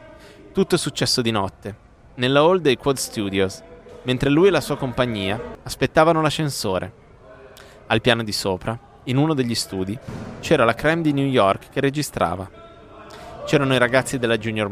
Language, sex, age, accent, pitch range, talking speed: Italian, male, 30-49, native, 105-145 Hz, 160 wpm